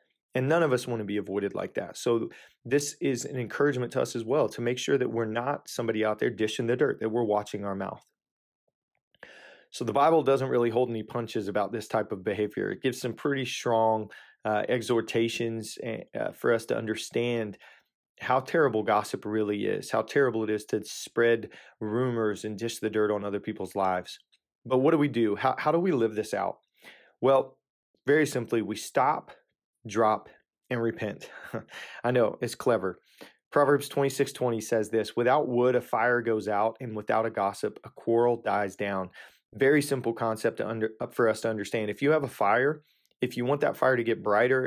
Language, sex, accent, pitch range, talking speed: English, male, American, 110-125 Hz, 200 wpm